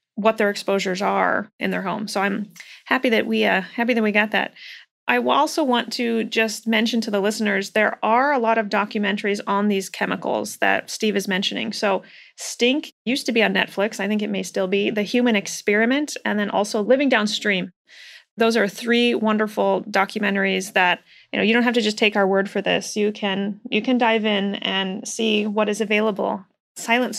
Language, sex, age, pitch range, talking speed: English, female, 30-49, 200-225 Hz, 205 wpm